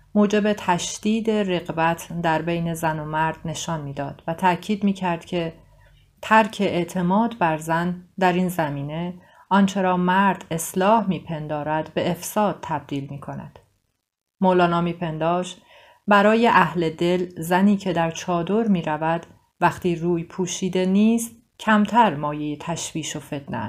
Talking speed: 120 wpm